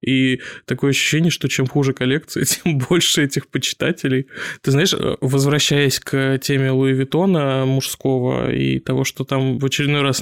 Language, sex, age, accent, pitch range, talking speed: Russian, male, 20-39, native, 135-150 Hz, 155 wpm